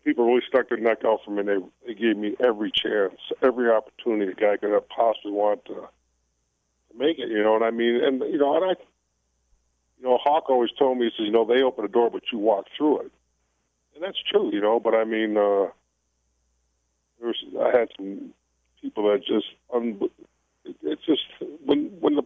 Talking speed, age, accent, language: 210 wpm, 50-69, American, English